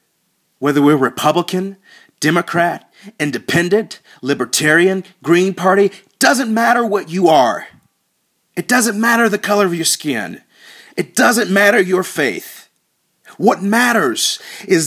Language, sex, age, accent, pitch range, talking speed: English, male, 40-59, American, 170-235 Hz, 115 wpm